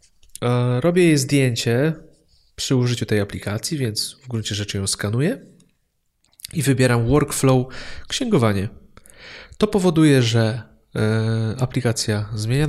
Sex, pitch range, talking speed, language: male, 105-130 Hz, 105 wpm, Polish